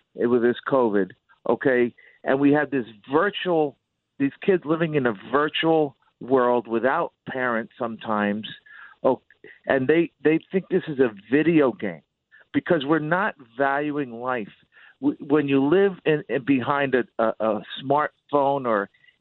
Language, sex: English, male